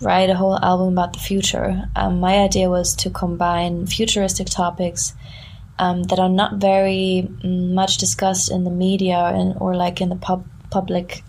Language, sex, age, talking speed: English, female, 20-39, 165 wpm